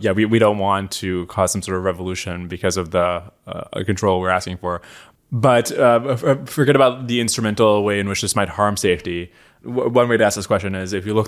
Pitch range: 95-110 Hz